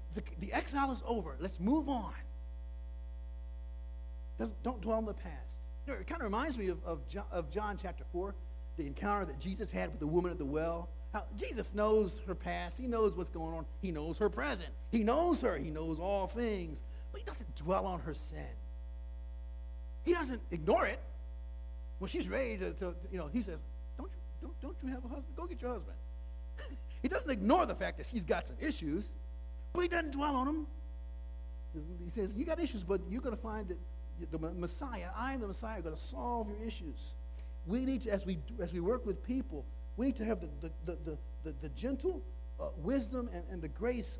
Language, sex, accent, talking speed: English, male, American, 205 wpm